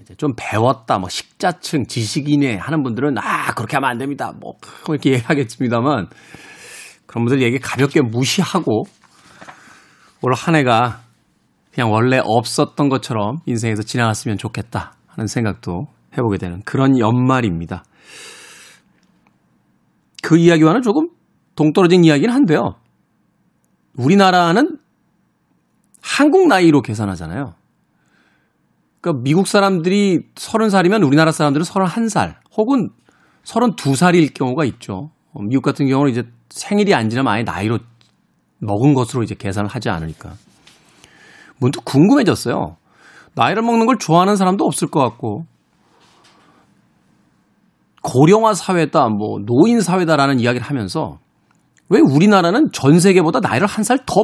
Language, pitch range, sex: Korean, 115-175 Hz, male